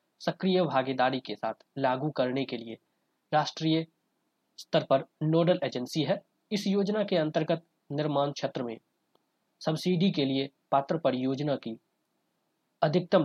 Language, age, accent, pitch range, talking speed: Hindi, 20-39, native, 130-160 Hz, 125 wpm